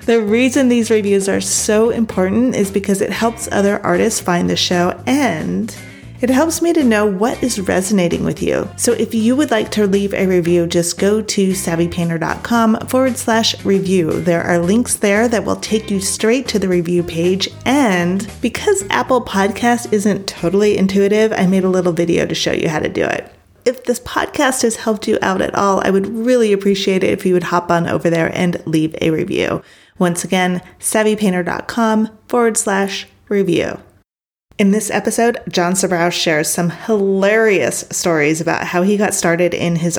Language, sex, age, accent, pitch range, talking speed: English, female, 30-49, American, 175-225 Hz, 185 wpm